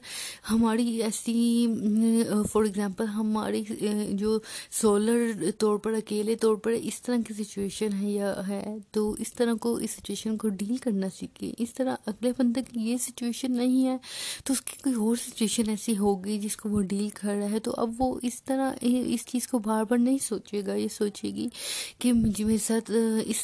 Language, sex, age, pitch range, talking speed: Urdu, female, 20-39, 205-230 Hz, 190 wpm